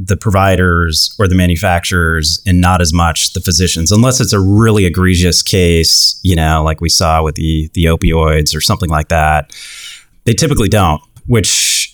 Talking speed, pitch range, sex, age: 170 wpm, 85-105 Hz, male, 30-49